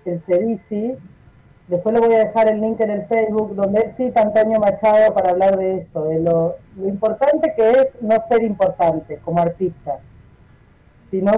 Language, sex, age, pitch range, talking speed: Spanish, female, 40-59, 175-230 Hz, 170 wpm